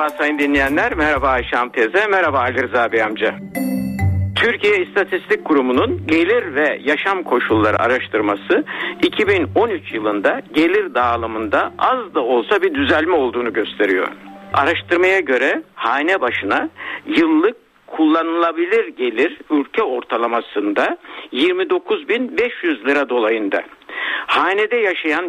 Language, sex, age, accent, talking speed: Turkish, male, 60-79, native, 105 wpm